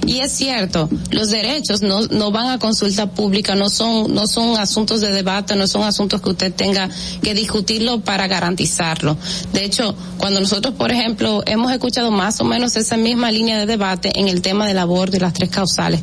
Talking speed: 200 wpm